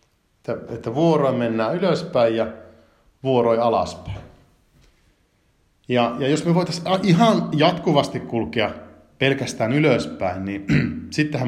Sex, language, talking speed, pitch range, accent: male, Finnish, 105 wpm, 110-140 Hz, native